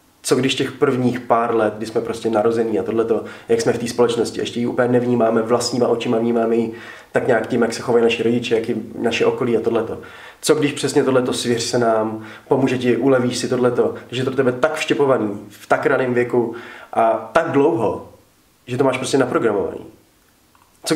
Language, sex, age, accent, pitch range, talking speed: Czech, male, 20-39, native, 115-135 Hz, 200 wpm